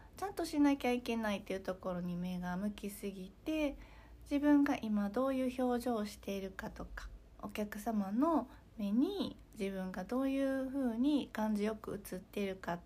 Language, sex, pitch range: Japanese, female, 190-255 Hz